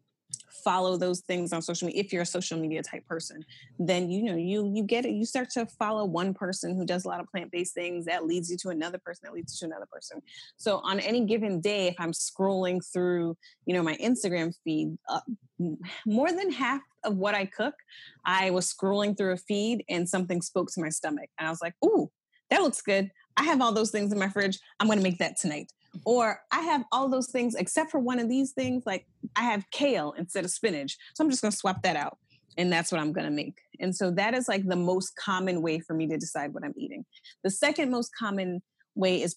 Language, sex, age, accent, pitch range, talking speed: English, female, 30-49, American, 165-215 Hz, 240 wpm